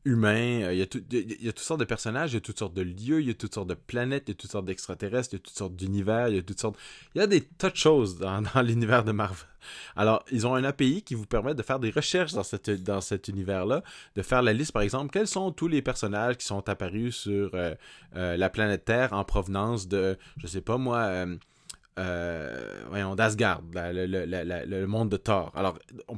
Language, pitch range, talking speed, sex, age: French, 95-120 Hz, 245 wpm, male, 20-39